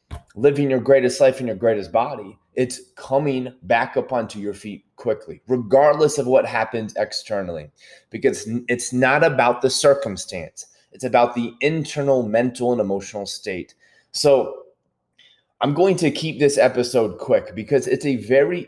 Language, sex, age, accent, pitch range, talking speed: English, male, 20-39, American, 115-140 Hz, 150 wpm